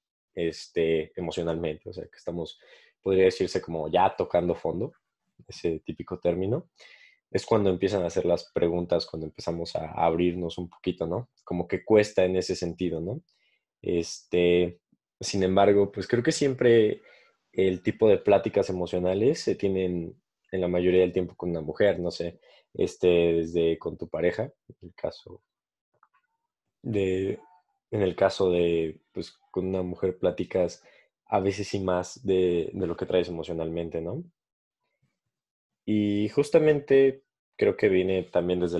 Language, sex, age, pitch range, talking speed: Spanish, male, 20-39, 90-110 Hz, 150 wpm